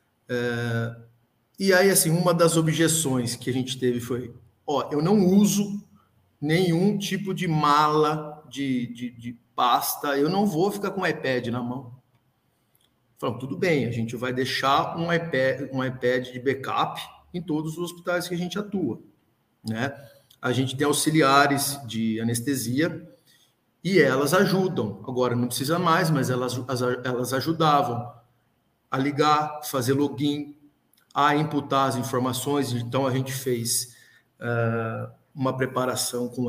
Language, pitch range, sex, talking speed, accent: Portuguese, 125-165 Hz, male, 145 wpm, Brazilian